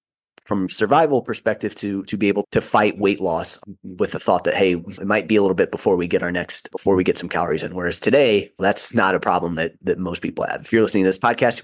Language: English